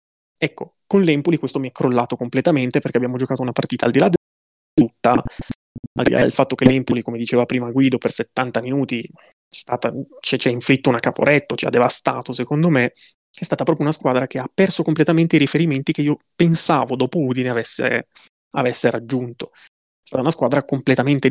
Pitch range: 125-155 Hz